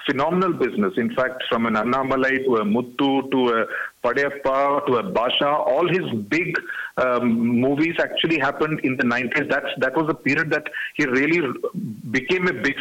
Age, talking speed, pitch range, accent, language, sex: 40-59, 175 wpm, 135-180 Hz, Indian, English, male